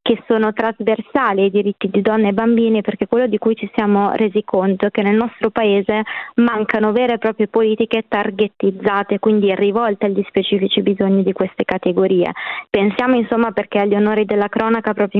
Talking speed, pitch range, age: 175 wpm, 200-225 Hz, 20-39